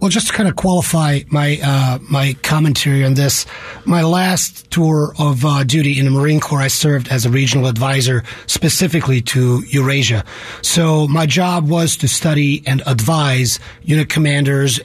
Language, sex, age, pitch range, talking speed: English, male, 30-49, 135-175 Hz, 165 wpm